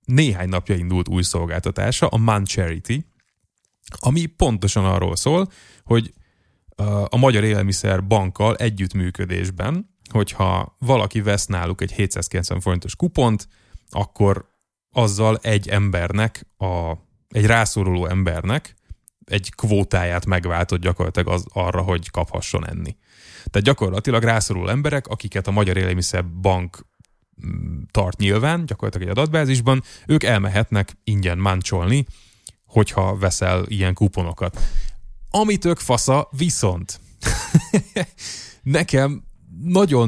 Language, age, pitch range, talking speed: Hungarian, 20-39, 95-120 Hz, 105 wpm